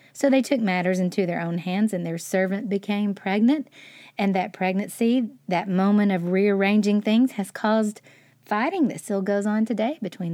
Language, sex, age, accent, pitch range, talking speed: English, female, 40-59, American, 165-215 Hz, 175 wpm